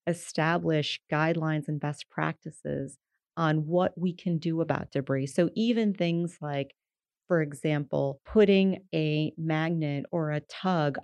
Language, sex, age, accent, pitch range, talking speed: English, female, 30-49, American, 145-170 Hz, 130 wpm